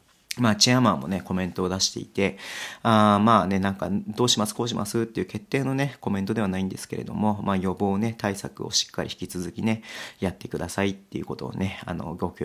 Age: 40-59